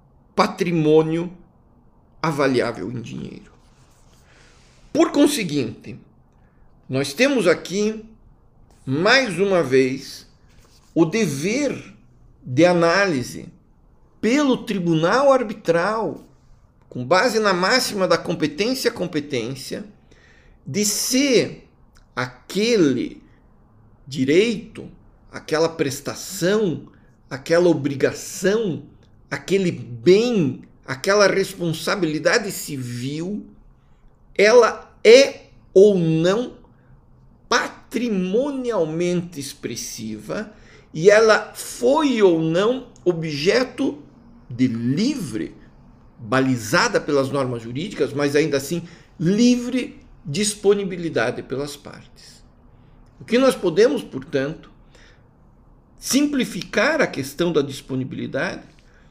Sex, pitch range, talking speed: male, 140-215 Hz, 75 wpm